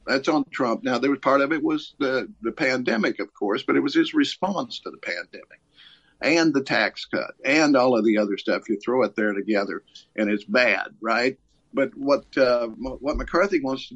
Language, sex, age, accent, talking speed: English, male, 50-69, American, 210 wpm